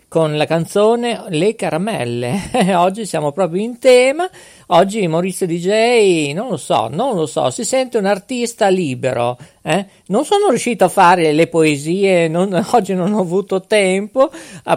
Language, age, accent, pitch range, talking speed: Italian, 50-69, native, 155-220 Hz, 160 wpm